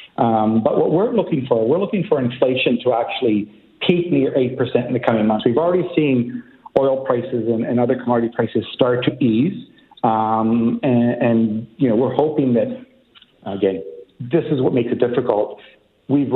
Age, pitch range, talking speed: 50-69, 110-140 Hz, 175 wpm